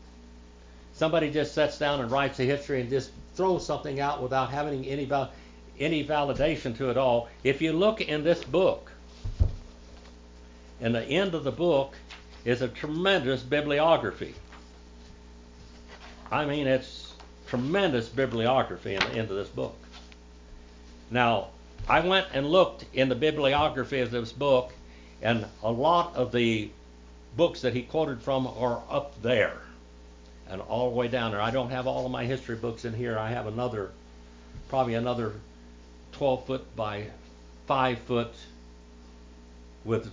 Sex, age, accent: male, 60-79, American